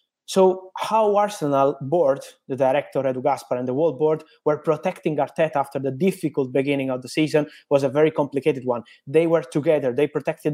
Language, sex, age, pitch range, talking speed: English, male, 20-39, 140-180 Hz, 180 wpm